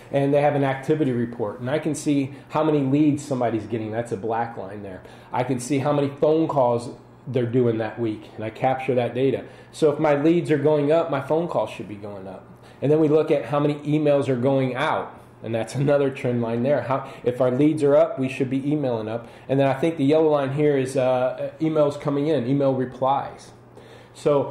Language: English